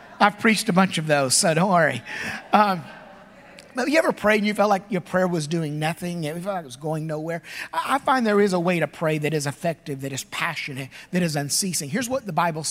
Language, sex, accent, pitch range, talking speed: English, male, American, 180-230 Hz, 240 wpm